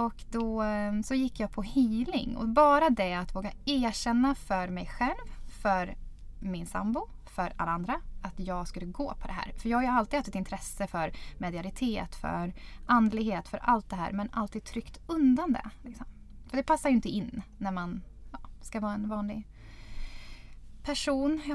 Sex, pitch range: female, 190-245 Hz